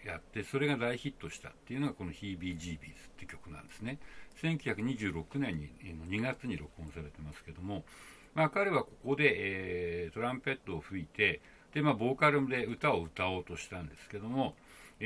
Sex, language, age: male, Japanese, 60-79